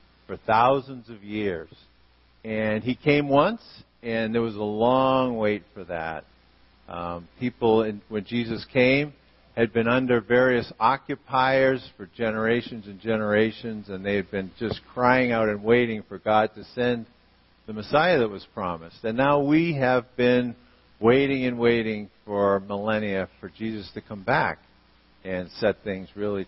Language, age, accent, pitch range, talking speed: English, 50-69, American, 100-125 Hz, 155 wpm